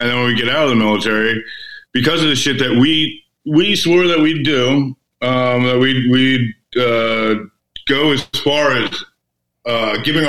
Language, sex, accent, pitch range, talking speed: English, male, American, 110-130 Hz, 180 wpm